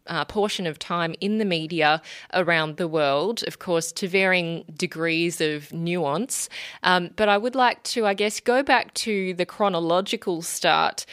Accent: Australian